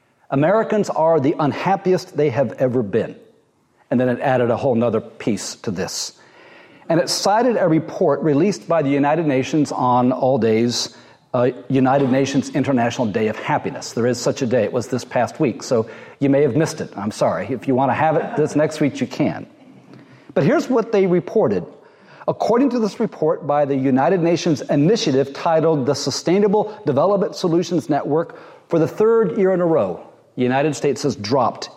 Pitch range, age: 135-170 Hz, 40-59